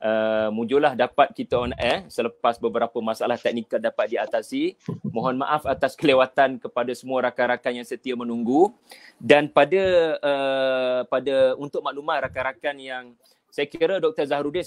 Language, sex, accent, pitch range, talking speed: Malayalam, male, Indonesian, 120-140 Hz, 145 wpm